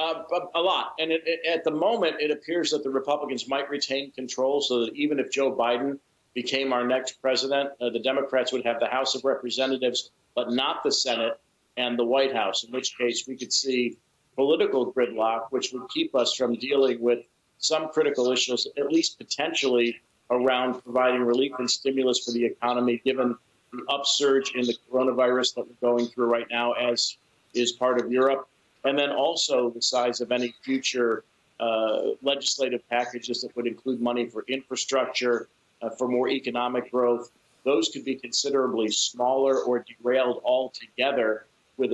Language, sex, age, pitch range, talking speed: Swedish, male, 50-69, 120-135 Hz, 170 wpm